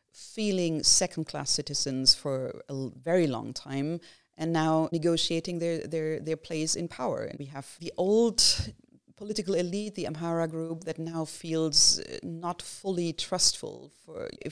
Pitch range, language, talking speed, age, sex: 140-165 Hz, English, 130 wpm, 30-49, female